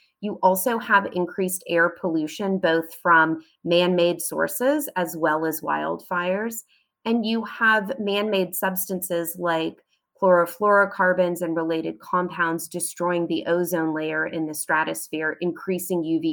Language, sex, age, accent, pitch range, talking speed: English, female, 30-49, American, 170-195 Hz, 120 wpm